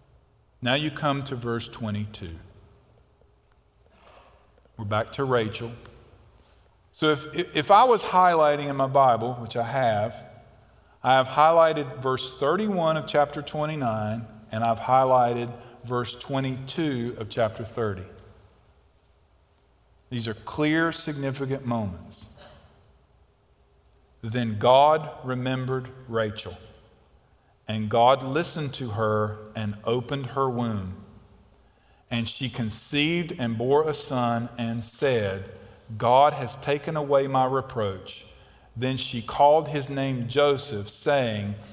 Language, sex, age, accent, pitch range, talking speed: English, male, 50-69, American, 110-135 Hz, 110 wpm